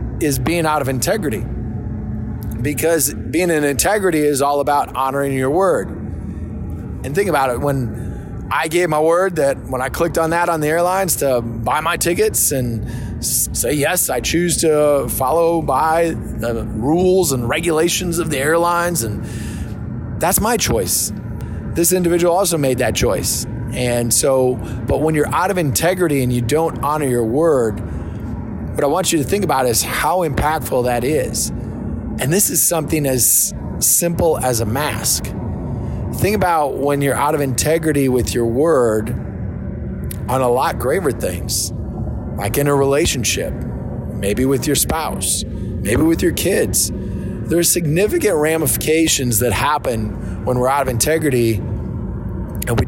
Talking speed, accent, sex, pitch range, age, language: 155 wpm, American, male, 110-160 Hz, 20-39, English